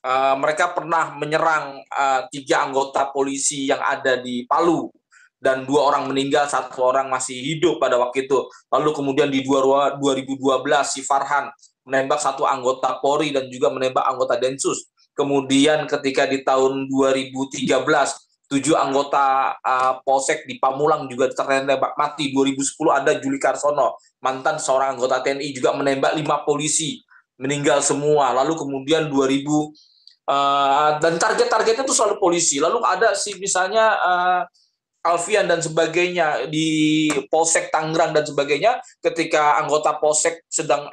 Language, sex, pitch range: Indonesian, male, 135-195 Hz